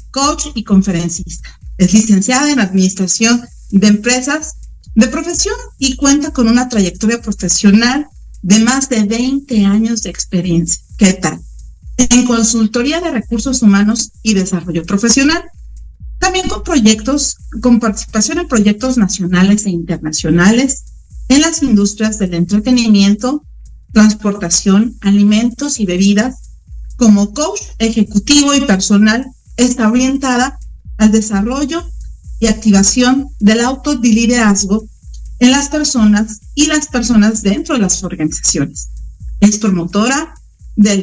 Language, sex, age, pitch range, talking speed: Spanish, female, 40-59, 200-260 Hz, 115 wpm